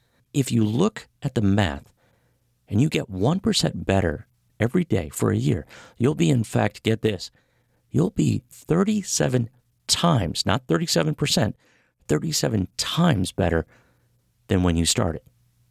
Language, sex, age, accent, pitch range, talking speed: English, male, 50-69, American, 105-135 Hz, 135 wpm